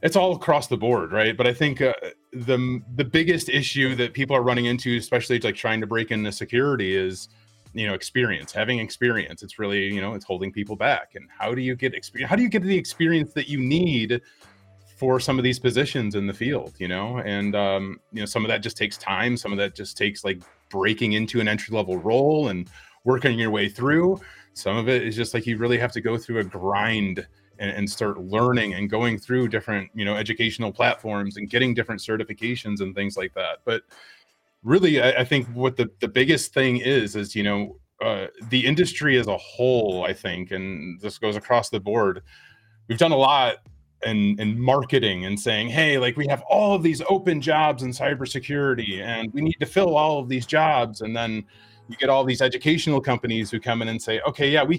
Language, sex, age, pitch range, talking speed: English, male, 30-49, 105-135 Hz, 215 wpm